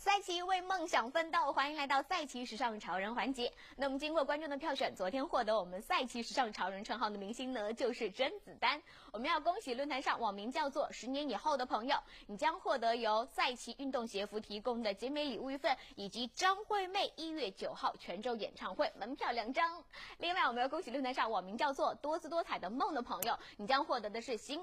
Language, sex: Chinese, female